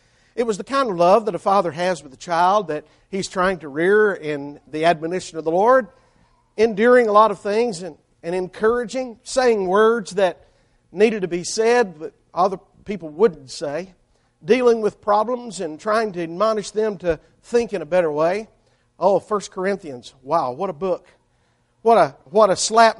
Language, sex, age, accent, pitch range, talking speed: English, male, 50-69, American, 165-220 Hz, 185 wpm